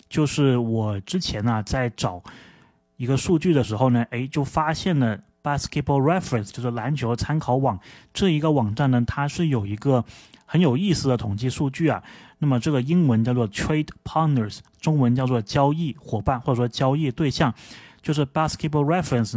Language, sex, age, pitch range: Chinese, male, 30-49, 115-150 Hz